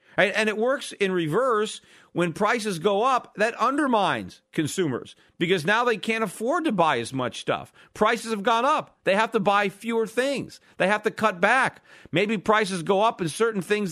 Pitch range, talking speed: 170-220 Hz, 190 wpm